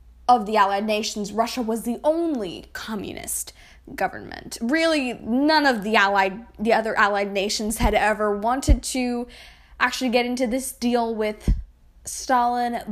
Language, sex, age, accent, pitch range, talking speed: English, female, 10-29, American, 195-245 Hz, 135 wpm